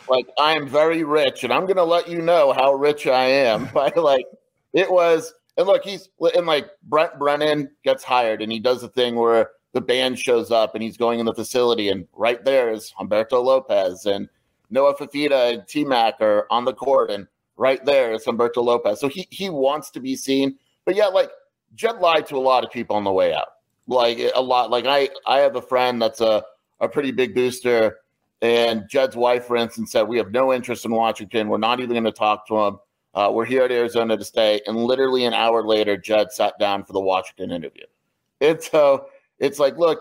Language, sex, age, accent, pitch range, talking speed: English, male, 30-49, American, 110-150 Hz, 225 wpm